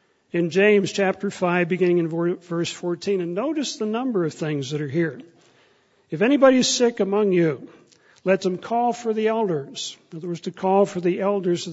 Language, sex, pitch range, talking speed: English, male, 170-210 Hz, 195 wpm